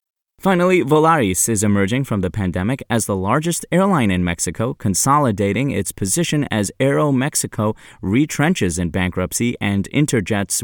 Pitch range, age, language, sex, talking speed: 95-135 Hz, 30-49, English, male, 135 wpm